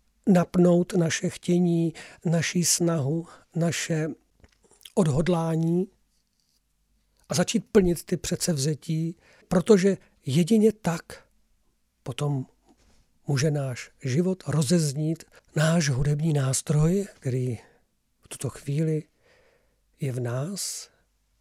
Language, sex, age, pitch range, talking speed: Czech, male, 50-69, 130-170 Hz, 85 wpm